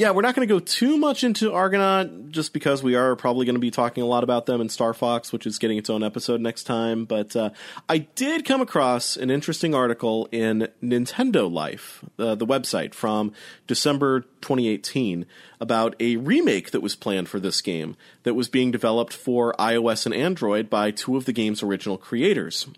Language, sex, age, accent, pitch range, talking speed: English, male, 30-49, American, 110-130 Hz, 200 wpm